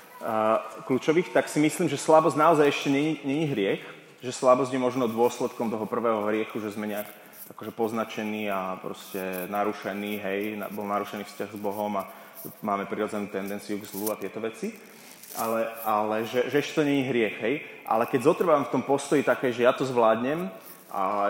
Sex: male